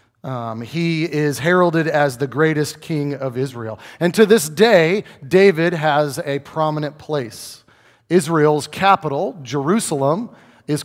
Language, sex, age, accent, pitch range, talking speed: English, male, 40-59, American, 130-175 Hz, 125 wpm